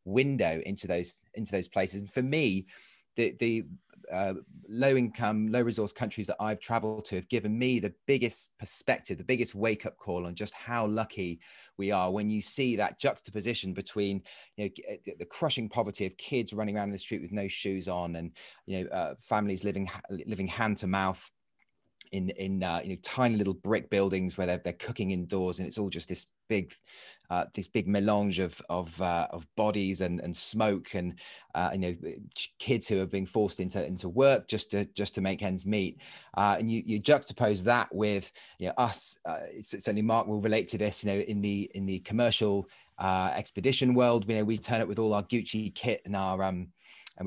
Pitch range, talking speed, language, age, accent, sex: 95-115 Hz, 205 wpm, English, 30-49, British, male